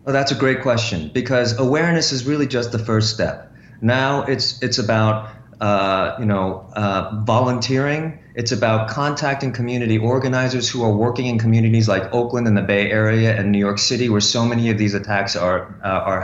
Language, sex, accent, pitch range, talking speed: English, male, American, 110-130 Hz, 190 wpm